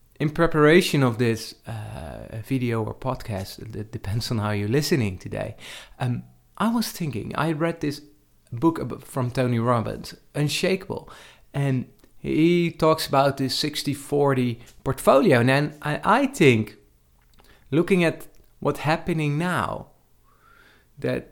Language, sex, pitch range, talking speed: English, male, 110-145 Hz, 125 wpm